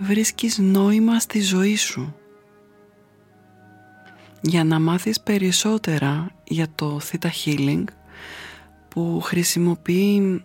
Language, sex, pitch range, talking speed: Greek, female, 150-195 Hz, 85 wpm